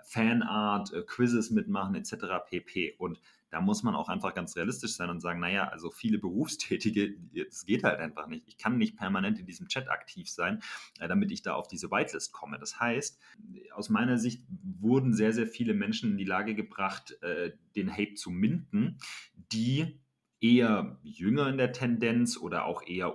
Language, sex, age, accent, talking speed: German, male, 30-49, German, 175 wpm